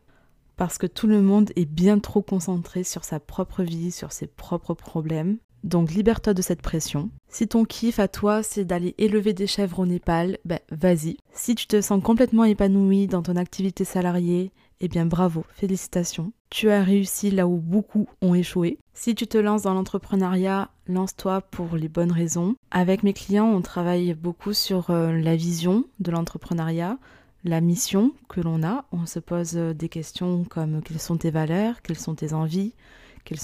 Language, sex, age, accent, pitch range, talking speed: French, female, 20-39, French, 165-195 Hz, 180 wpm